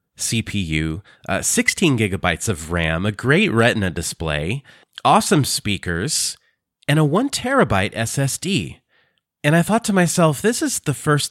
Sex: male